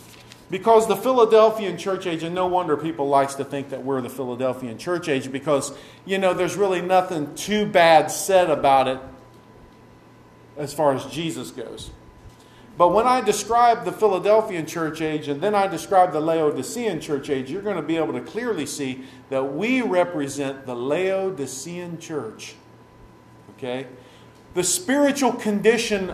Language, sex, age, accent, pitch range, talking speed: English, male, 50-69, American, 145-225 Hz, 155 wpm